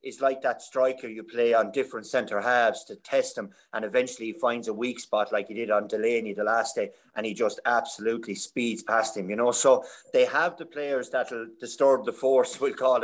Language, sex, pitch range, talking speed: English, male, 120-165 Hz, 225 wpm